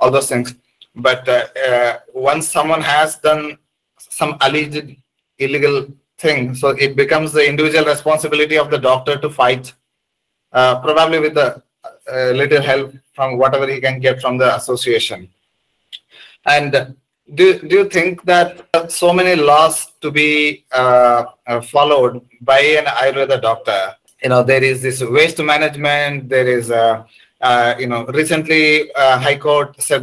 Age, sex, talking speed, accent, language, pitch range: 30-49, male, 155 wpm, Indian, English, 130-150 Hz